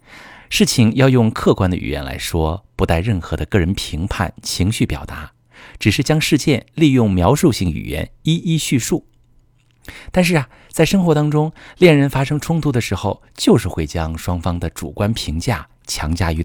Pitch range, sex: 85-120 Hz, male